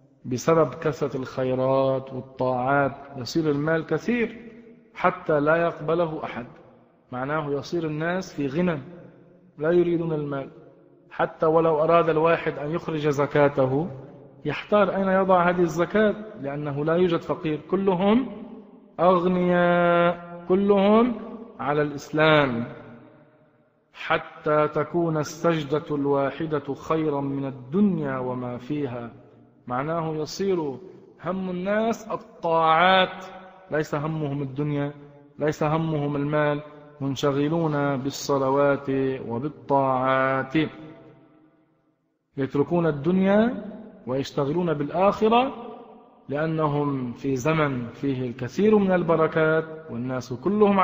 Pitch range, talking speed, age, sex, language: 140-175 Hz, 90 wpm, 40-59, male, Arabic